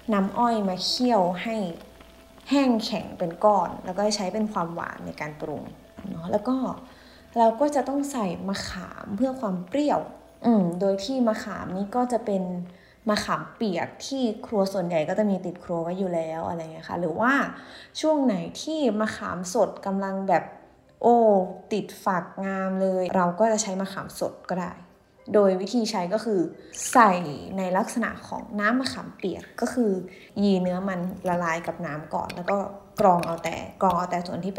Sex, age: female, 20-39